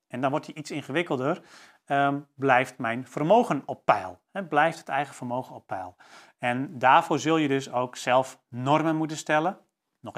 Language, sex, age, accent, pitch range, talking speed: Dutch, male, 40-59, Dutch, 125-150 Hz, 175 wpm